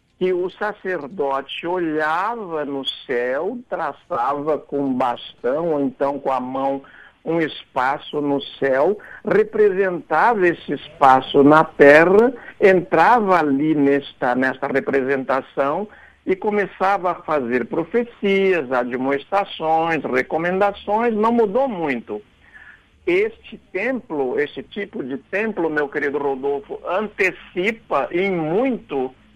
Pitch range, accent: 135-195 Hz, Brazilian